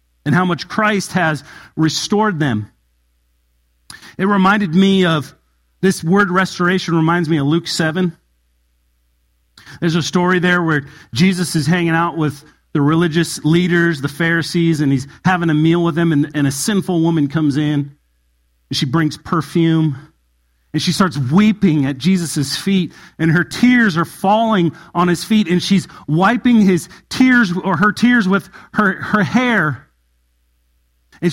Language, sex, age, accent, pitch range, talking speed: English, male, 40-59, American, 150-220 Hz, 150 wpm